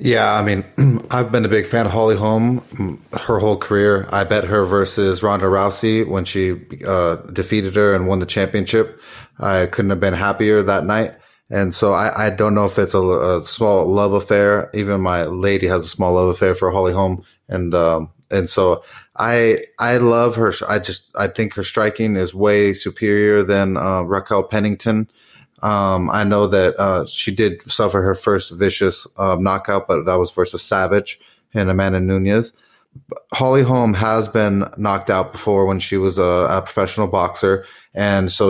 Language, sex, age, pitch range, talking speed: English, male, 20-39, 95-110 Hz, 185 wpm